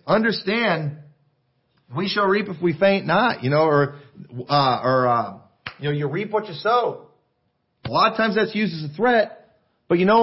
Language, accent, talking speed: English, American, 195 wpm